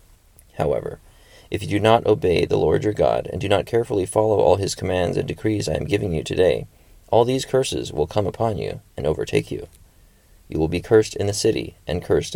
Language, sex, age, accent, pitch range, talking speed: English, male, 30-49, American, 85-110 Hz, 215 wpm